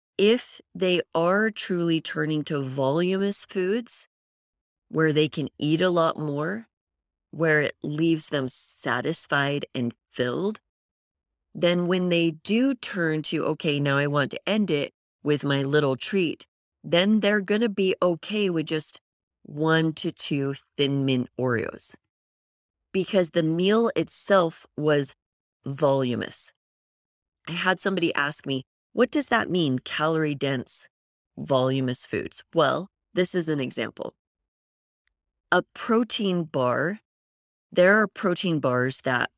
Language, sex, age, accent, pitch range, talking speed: English, female, 30-49, American, 135-180 Hz, 130 wpm